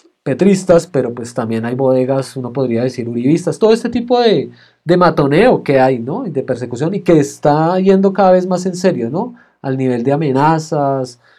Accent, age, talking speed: Colombian, 30-49, 190 wpm